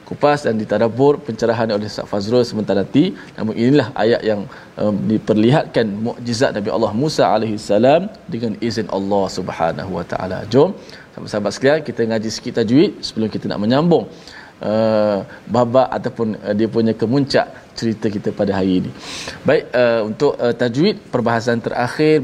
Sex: male